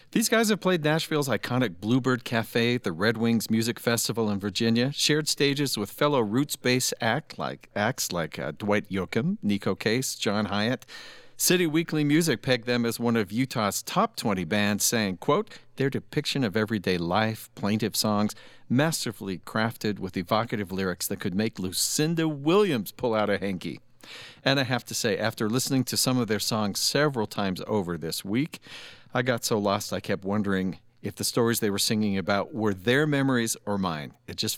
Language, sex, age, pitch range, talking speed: English, male, 50-69, 105-140 Hz, 180 wpm